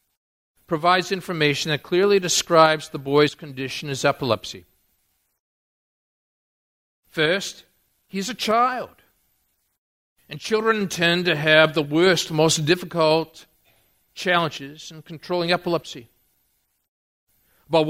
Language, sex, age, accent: English, male, 50-69, American